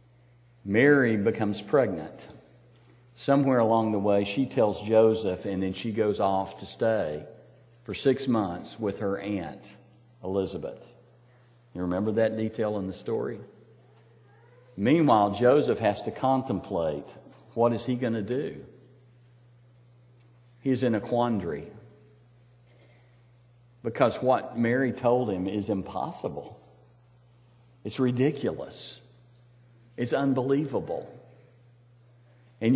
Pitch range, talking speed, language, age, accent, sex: 105-120 Hz, 110 wpm, English, 50-69, American, male